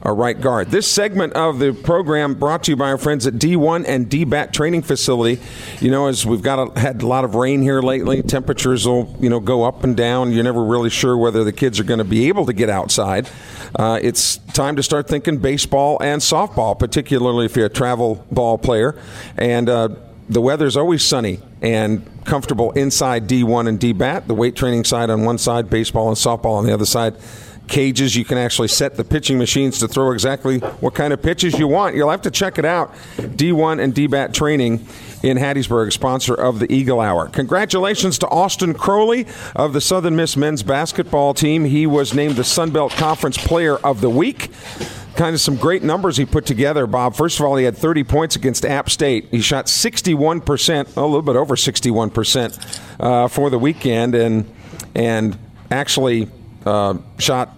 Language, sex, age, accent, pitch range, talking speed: English, male, 50-69, American, 115-150 Hz, 195 wpm